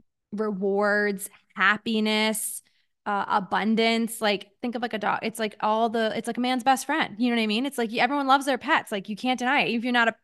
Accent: American